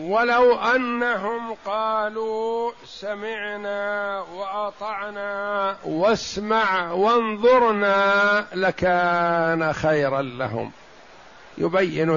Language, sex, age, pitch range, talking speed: Arabic, male, 50-69, 160-200 Hz, 55 wpm